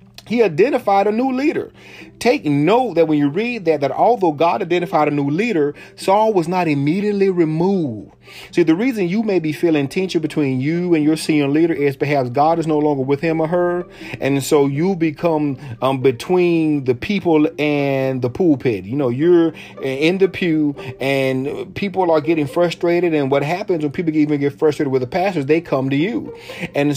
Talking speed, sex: 190 wpm, male